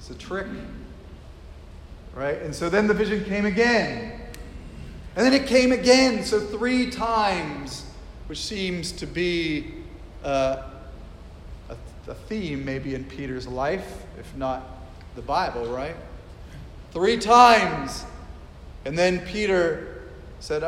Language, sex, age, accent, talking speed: English, male, 40-59, American, 120 wpm